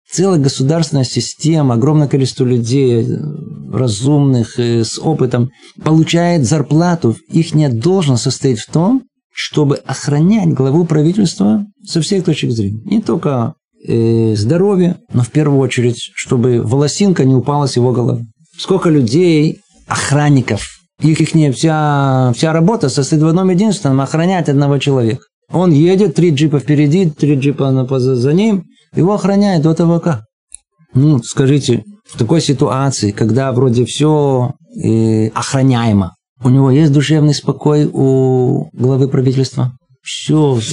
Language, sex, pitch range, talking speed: Russian, male, 125-160 Hz, 125 wpm